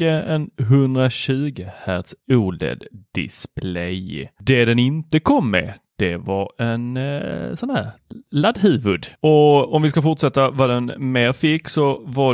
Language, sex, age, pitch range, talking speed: Swedish, male, 30-49, 110-150 Hz, 125 wpm